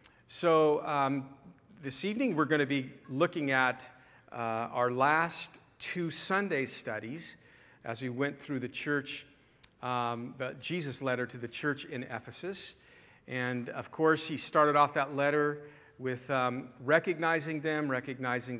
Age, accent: 50-69, American